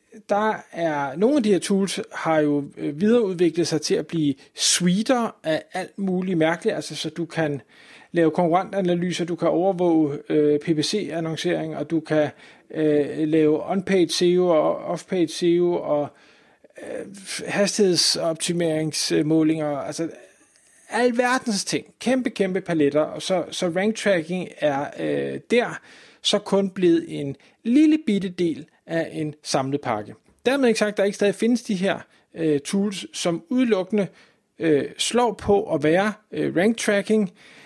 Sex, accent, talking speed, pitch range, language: male, native, 140 wpm, 155-205 Hz, Danish